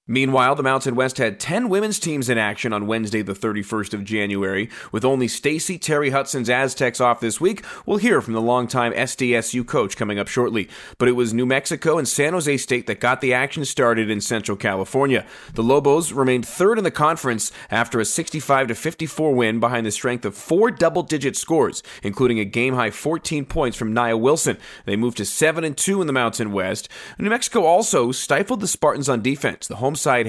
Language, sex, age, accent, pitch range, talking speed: English, male, 30-49, American, 115-155 Hz, 200 wpm